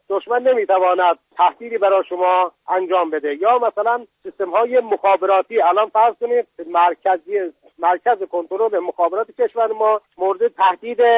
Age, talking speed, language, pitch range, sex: 50-69, 125 wpm, Persian, 185-255 Hz, male